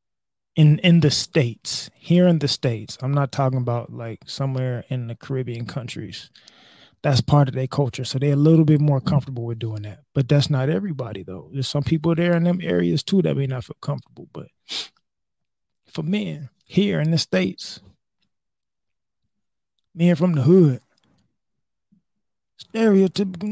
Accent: American